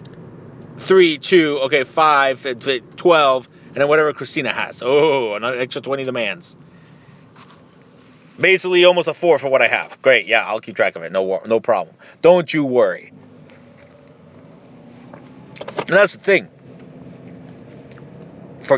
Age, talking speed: 30-49, 130 wpm